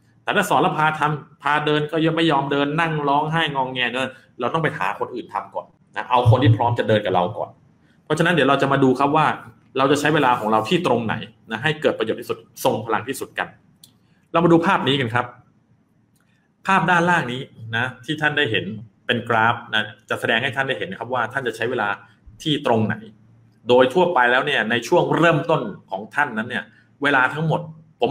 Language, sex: Thai, male